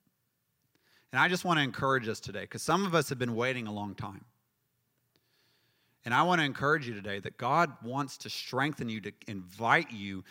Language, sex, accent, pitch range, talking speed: English, male, American, 125-170 Hz, 200 wpm